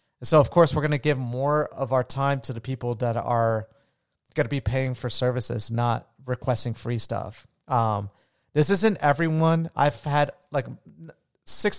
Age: 30-49